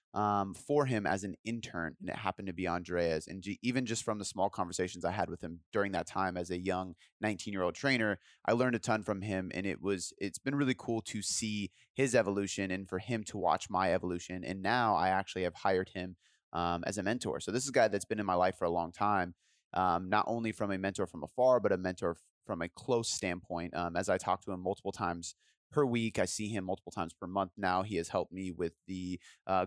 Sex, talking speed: male, 245 wpm